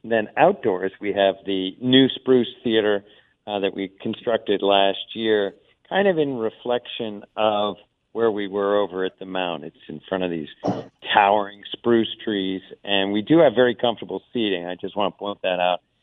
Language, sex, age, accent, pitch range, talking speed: English, male, 40-59, American, 95-110 Hz, 180 wpm